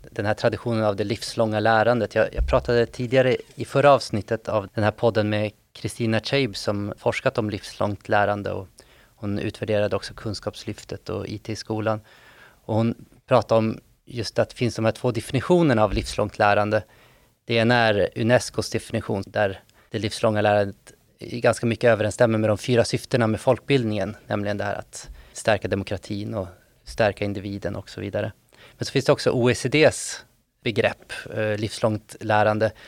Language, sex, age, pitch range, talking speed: Swedish, male, 30-49, 105-125 Hz, 160 wpm